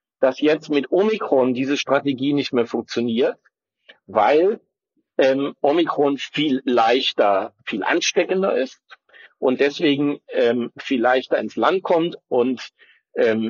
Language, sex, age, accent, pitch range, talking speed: German, male, 50-69, German, 120-145 Hz, 120 wpm